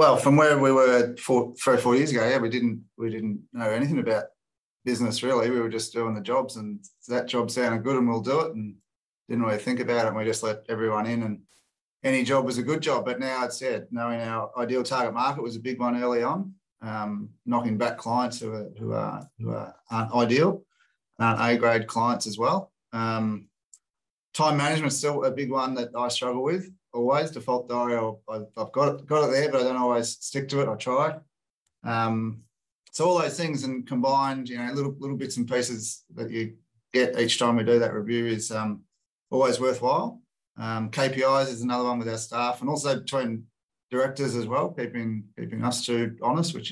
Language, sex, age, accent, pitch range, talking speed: English, male, 30-49, Australian, 115-130 Hz, 210 wpm